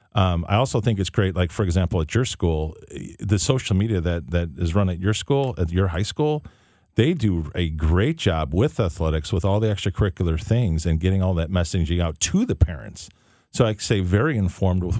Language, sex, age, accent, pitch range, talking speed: English, male, 40-59, American, 85-110 Hz, 210 wpm